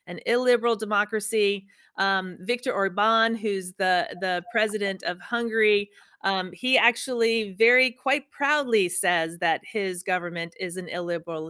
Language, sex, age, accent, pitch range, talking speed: English, female, 40-59, American, 190-245 Hz, 130 wpm